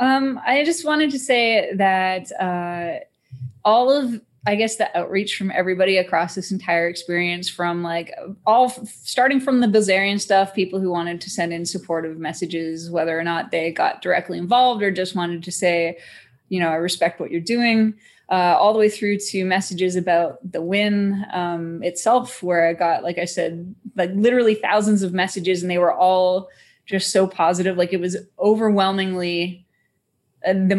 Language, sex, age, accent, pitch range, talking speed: English, female, 20-39, American, 170-200 Hz, 175 wpm